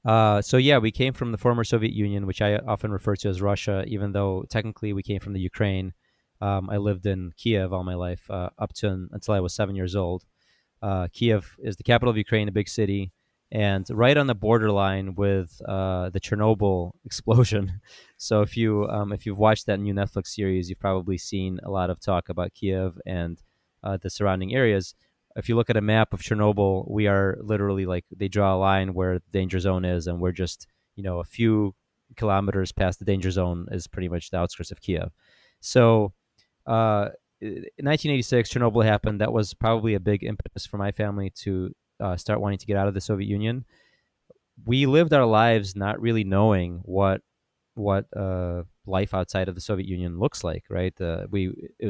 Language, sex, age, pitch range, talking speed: English, male, 20-39, 95-110 Hz, 200 wpm